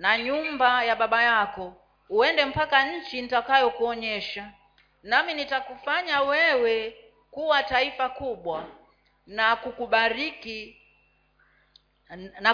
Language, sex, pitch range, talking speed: Swahili, female, 225-285 Hz, 85 wpm